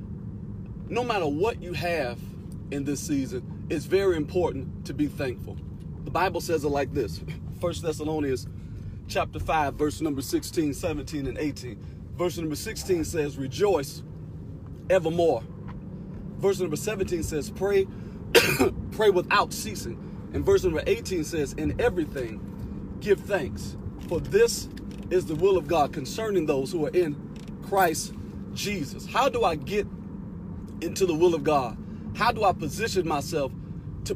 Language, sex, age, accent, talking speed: English, male, 40-59, American, 145 wpm